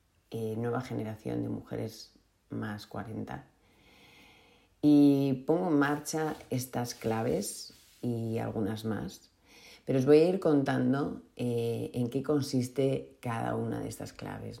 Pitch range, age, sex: 110-135 Hz, 40-59, female